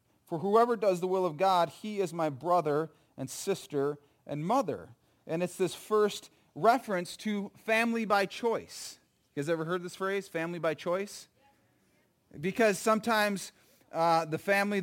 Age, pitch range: 40-59, 150-205 Hz